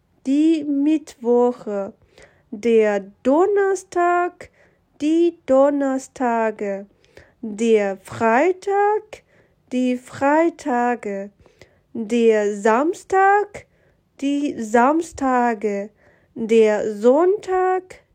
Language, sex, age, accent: Chinese, female, 20-39, German